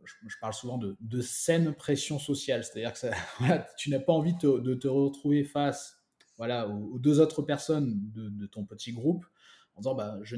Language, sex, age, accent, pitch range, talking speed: French, male, 20-39, French, 110-140 Hz, 190 wpm